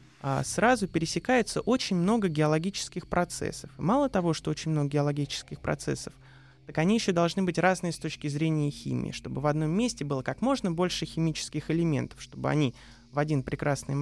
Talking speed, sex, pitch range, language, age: 165 wpm, male, 135-190 Hz, Russian, 20-39